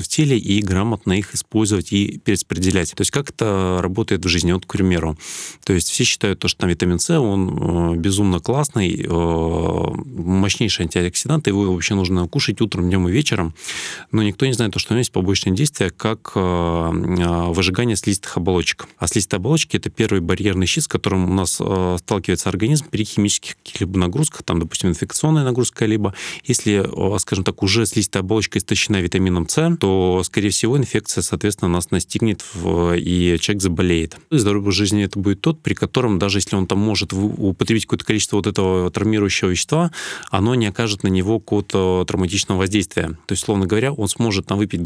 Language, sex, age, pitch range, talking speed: Russian, male, 30-49, 90-110 Hz, 185 wpm